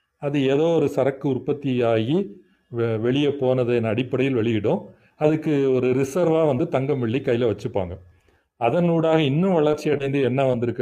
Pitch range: 115-150 Hz